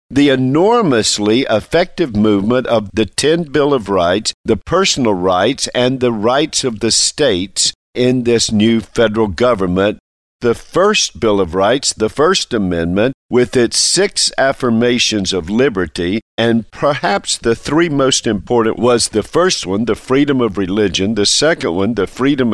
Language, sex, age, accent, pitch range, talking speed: English, male, 50-69, American, 105-130 Hz, 150 wpm